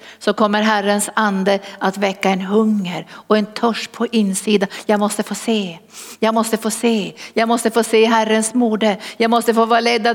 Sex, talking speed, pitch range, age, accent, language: female, 195 wpm, 215-240 Hz, 50-69, native, Swedish